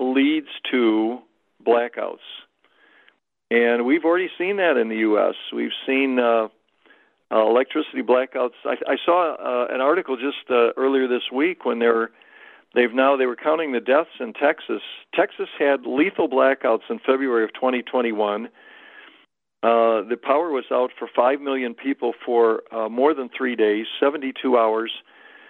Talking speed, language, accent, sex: 150 wpm, English, American, male